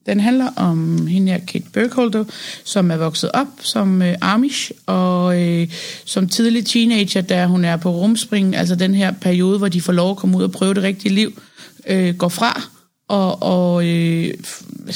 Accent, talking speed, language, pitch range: native, 190 wpm, Danish, 175-210 Hz